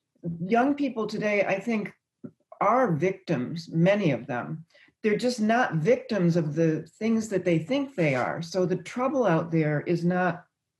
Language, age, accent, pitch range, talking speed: English, 40-59, American, 155-205 Hz, 160 wpm